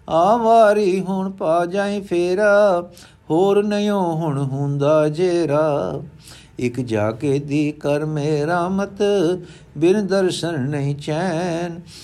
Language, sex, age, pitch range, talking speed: Punjabi, male, 60-79, 135-170 Hz, 95 wpm